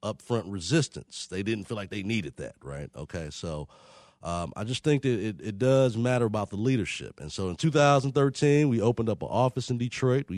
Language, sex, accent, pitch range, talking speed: English, male, American, 100-125 Hz, 200 wpm